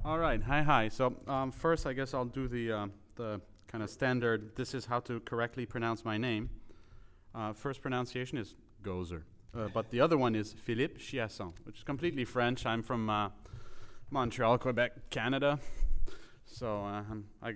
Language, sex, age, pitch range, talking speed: English, male, 30-49, 105-130 Hz, 170 wpm